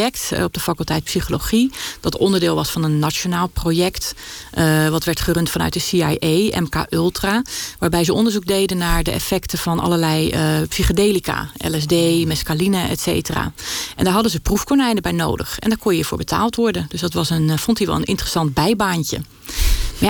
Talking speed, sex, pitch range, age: 180 wpm, female, 160-195 Hz, 30-49